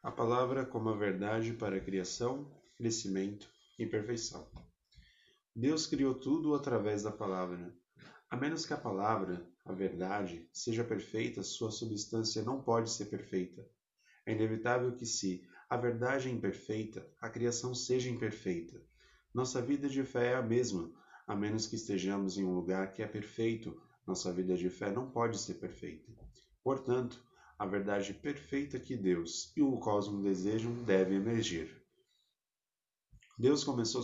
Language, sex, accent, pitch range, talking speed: Portuguese, male, Brazilian, 95-125 Hz, 145 wpm